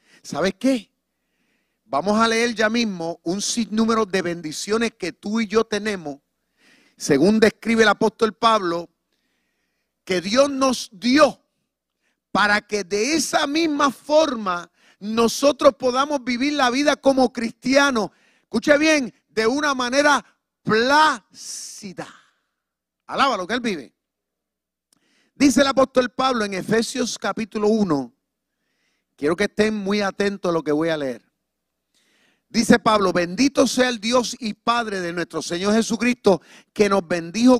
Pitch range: 205-265 Hz